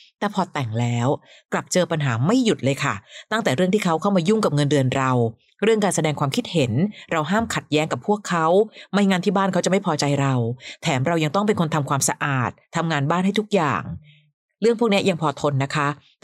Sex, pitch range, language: female, 140-195 Hz, Thai